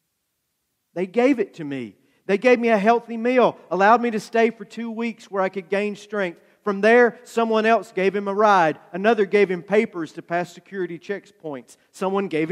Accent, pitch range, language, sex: American, 165-210 Hz, English, male